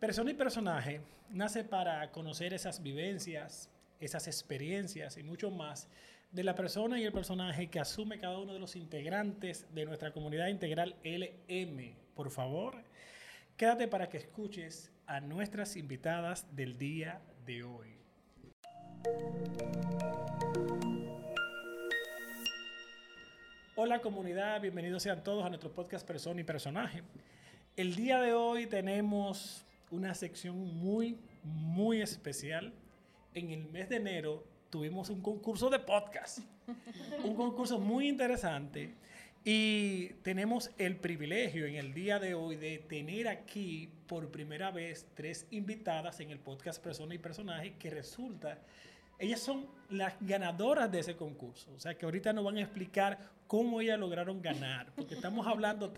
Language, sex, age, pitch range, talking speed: Spanish, male, 30-49, 155-205 Hz, 135 wpm